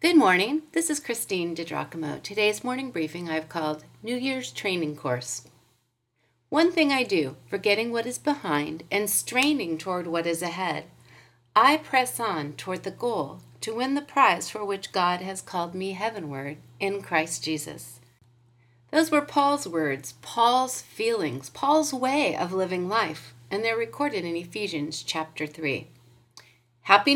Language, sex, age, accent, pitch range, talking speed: English, female, 40-59, American, 145-230 Hz, 150 wpm